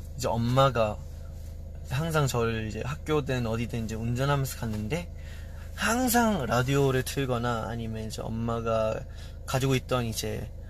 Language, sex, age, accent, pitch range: Korean, male, 20-39, native, 80-135 Hz